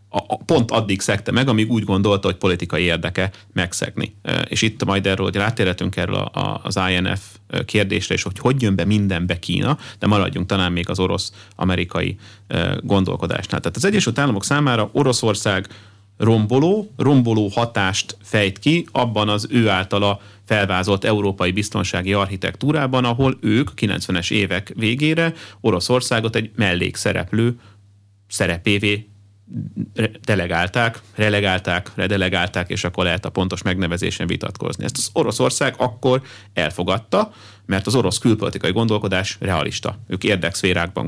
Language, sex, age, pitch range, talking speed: Hungarian, male, 30-49, 95-115 Hz, 125 wpm